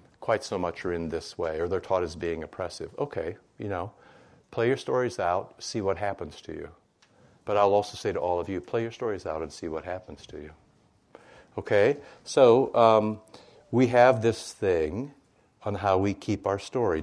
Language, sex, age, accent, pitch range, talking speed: English, male, 60-79, American, 100-130 Hz, 195 wpm